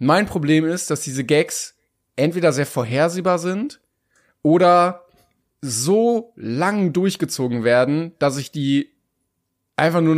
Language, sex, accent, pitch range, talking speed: German, male, German, 140-175 Hz, 120 wpm